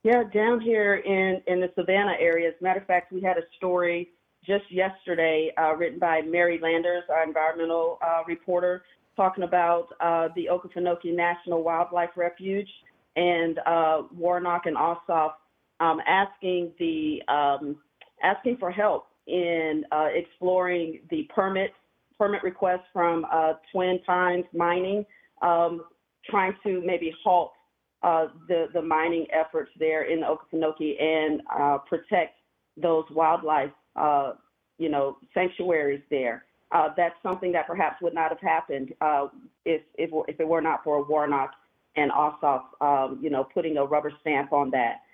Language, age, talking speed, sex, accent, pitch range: English, 40-59, 150 wpm, female, American, 155-180 Hz